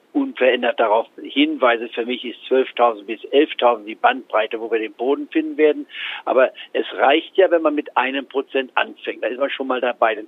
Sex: male